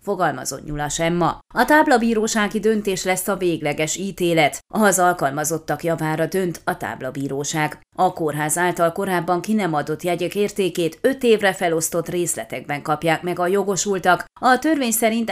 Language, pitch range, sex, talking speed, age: Hungarian, 165-215 Hz, female, 140 wpm, 30-49